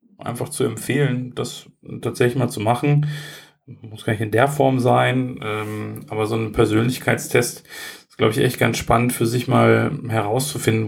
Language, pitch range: German, 115-150 Hz